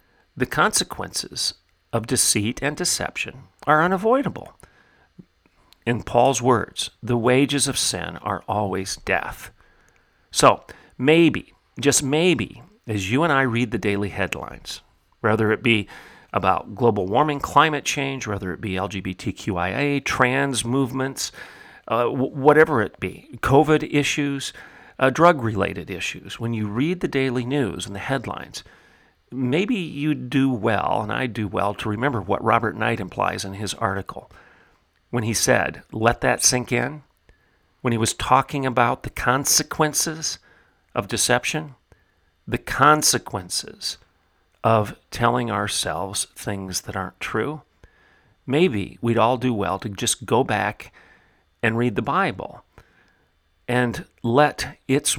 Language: English